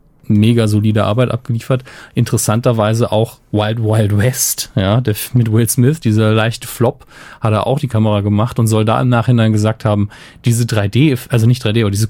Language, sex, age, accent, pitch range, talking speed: German, male, 30-49, German, 110-125 Hz, 180 wpm